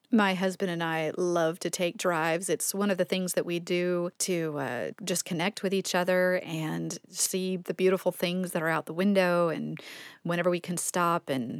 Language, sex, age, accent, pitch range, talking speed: English, female, 30-49, American, 170-200 Hz, 200 wpm